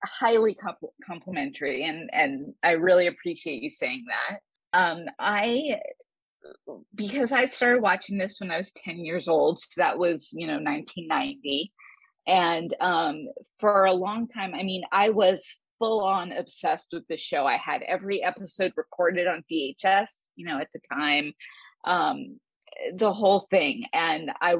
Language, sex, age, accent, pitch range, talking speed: English, female, 30-49, American, 175-245 Hz, 150 wpm